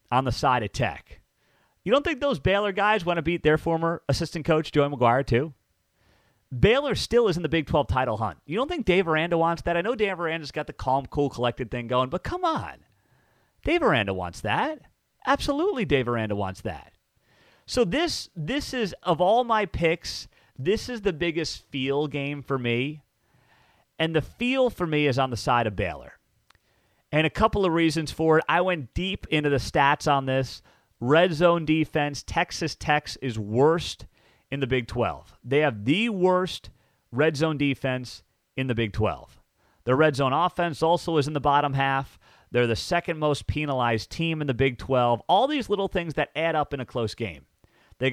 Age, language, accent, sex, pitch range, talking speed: 30-49, English, American, male, 125-170 Hz, 195 wpm